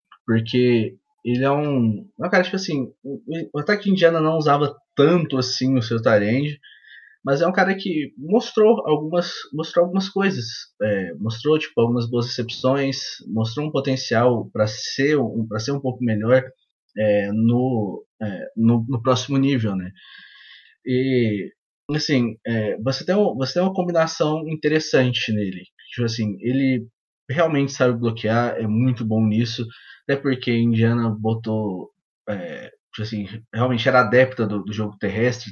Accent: Brazilian